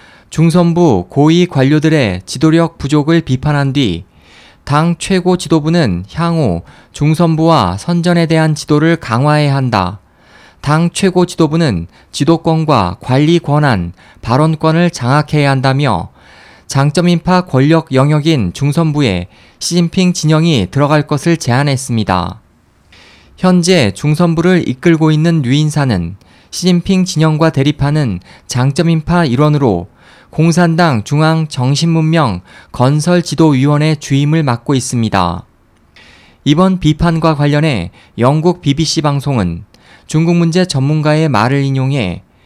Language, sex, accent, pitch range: Korean, male, native, 125-165 Hz